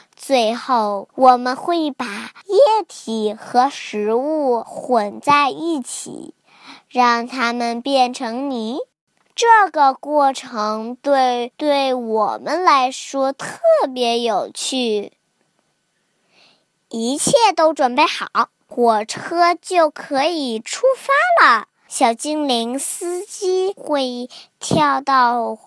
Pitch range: 220-300 Hz